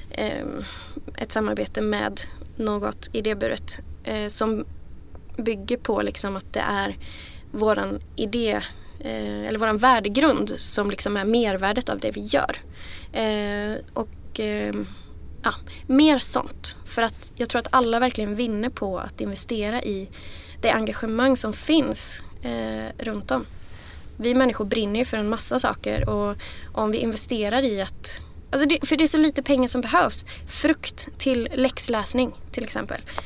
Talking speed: 135 wpm